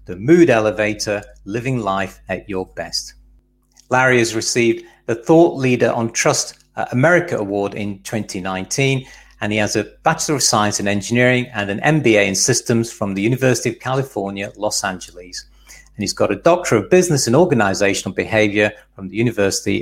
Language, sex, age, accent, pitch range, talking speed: English, male, 40-59, British, 100-130 Hz, 165 wpm